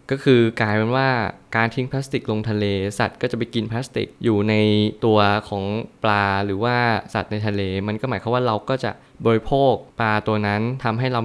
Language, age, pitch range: Thai, 20-39, 105-125 Hz